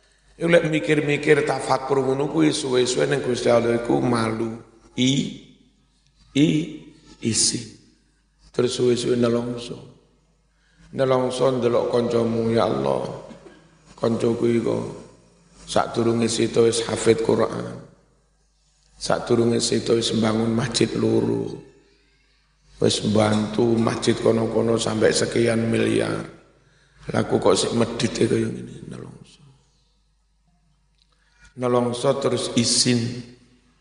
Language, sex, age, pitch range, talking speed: Indonesian, male, 50-69, 120-150 Hz, 100 wpm